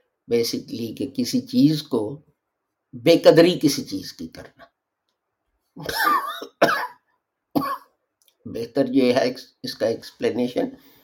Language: English